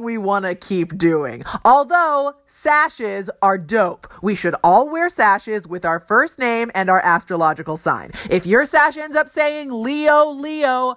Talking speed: 165 wpm